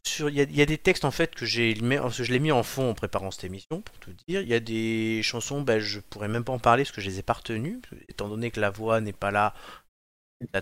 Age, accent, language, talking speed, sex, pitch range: 30-49, French, French, 290 wpm, male, 100-130 Hz